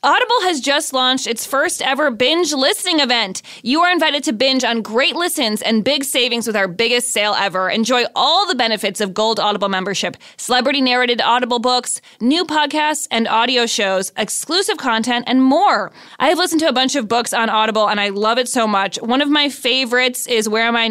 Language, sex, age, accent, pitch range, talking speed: English, female, 20-39, American, 205-275 Hz, 200 wpm